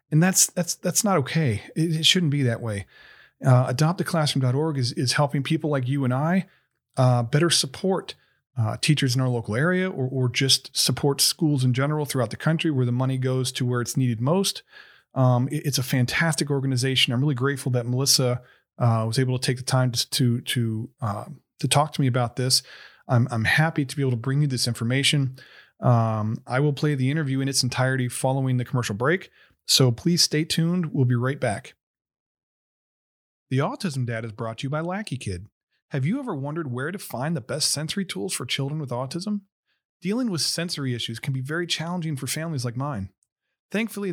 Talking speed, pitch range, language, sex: 200 wpm, 125-160 Hz, English, male